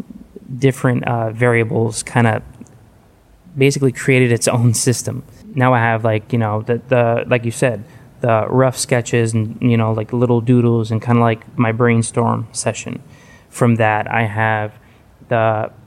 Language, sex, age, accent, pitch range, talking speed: English, male, 20-39, American, 115-125 Hz, 160 wpm